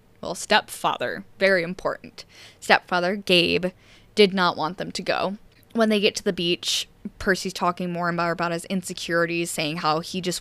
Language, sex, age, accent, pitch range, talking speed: English, female, 10-29, American, 170-210 Hz, 175 wpm